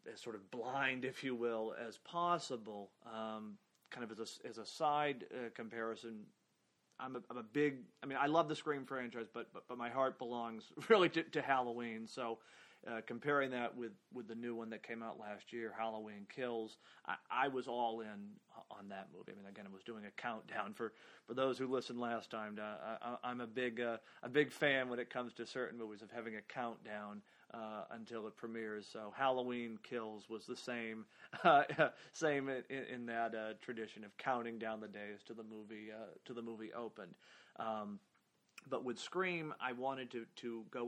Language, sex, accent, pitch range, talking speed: English, male, American, 110-130 Hz, 205 wpm